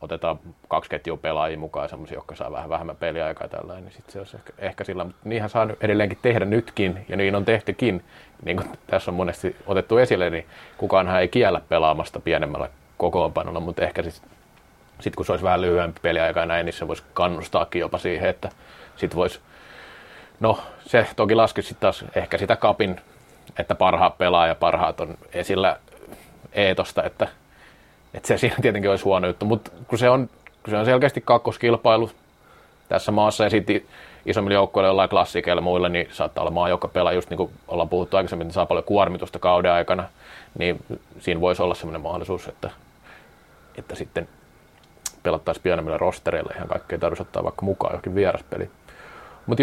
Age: 30-49